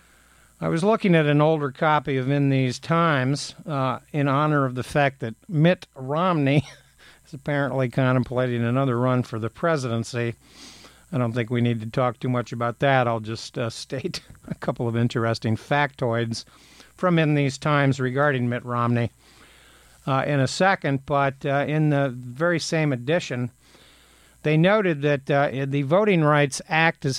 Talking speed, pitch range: 165 wpm, 120-150 Hz